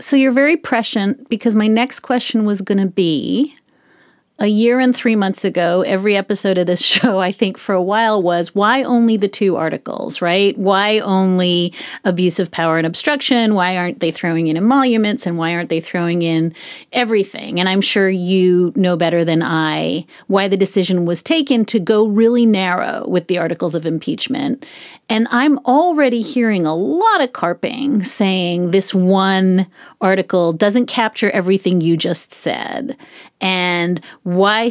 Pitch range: 180-235 Hz